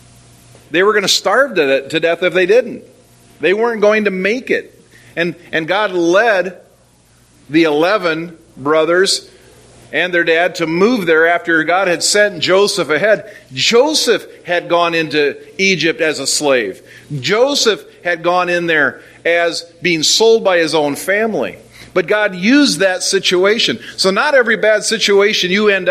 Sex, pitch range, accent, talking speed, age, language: male, 170-240 Hz, American, 155 wpm, 50-69, English